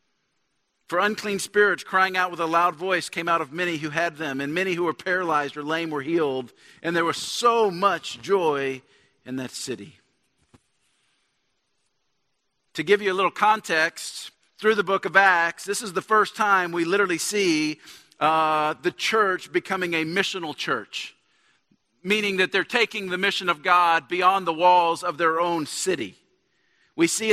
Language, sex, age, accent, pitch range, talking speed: English, male, 50-69, American, 165-200 Hz, 170 wpm